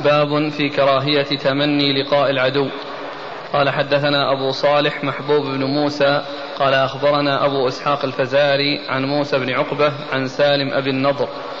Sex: male